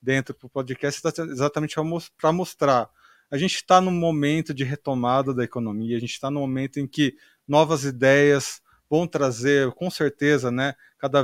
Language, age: Portuguese, 20-39